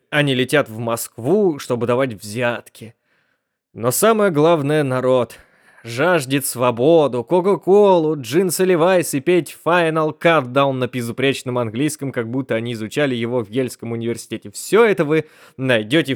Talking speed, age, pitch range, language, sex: 130 wpm, 20-39, 120-160 Hz, Russian, male